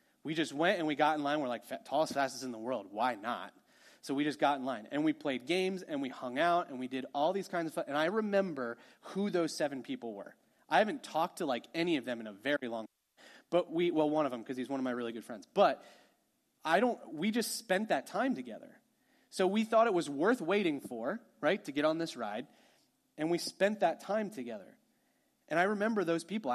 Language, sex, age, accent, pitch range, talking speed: English, male, 30-49, American, 145-225 Hz, 245 wpm